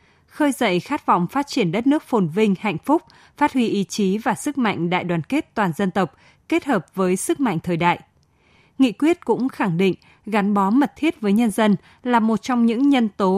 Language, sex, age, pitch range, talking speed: Vietnamese, female, 20-39, 185-235 Hz, 225 wpm